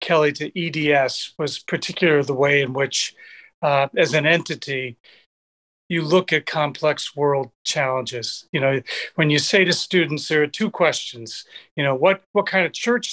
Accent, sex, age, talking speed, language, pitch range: American, male, 40-59, 170 wpm, English, 145-190 Hz